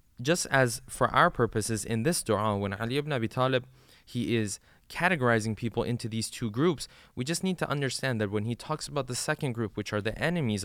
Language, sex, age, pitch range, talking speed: English, male, 20-39, 105-140 Hz, 215 wpm